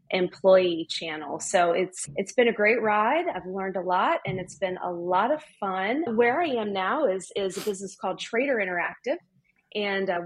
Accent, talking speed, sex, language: American, 195 wpm, female, English